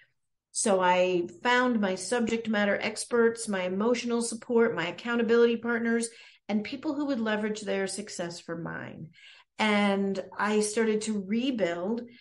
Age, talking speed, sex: 40-59, 135 wpm, female